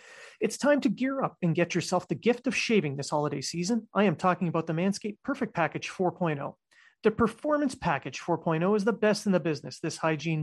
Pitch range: 160-210 Hz